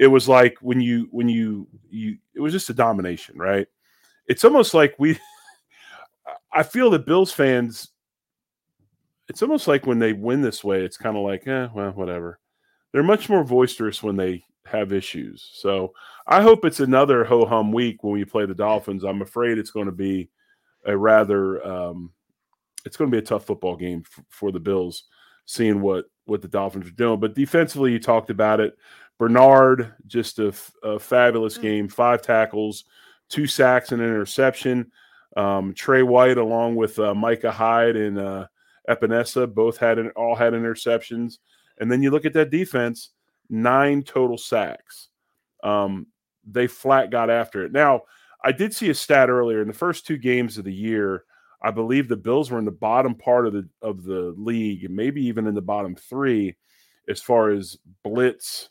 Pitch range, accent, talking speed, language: 105-130 Hz, American, 180 wpm, English